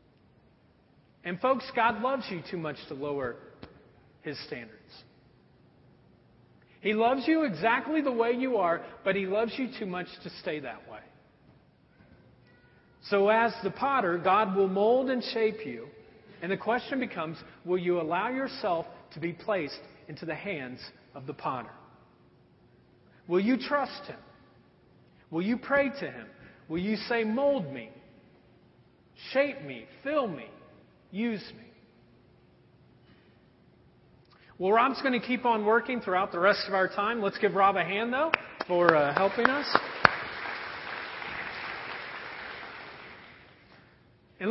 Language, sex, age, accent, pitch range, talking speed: English, male, 40-59, American, 190-255 Hz, 135 wpm